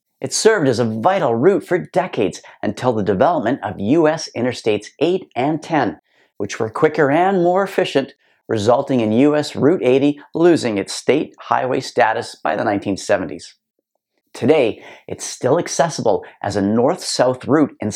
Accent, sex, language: American, male, English